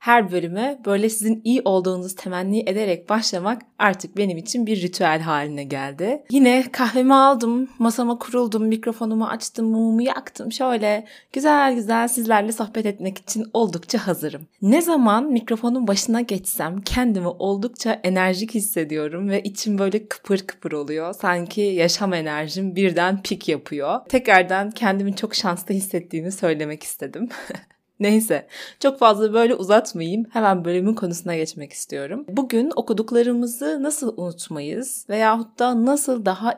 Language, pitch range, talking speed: Turkish, 185-235 Hz, 130 wpm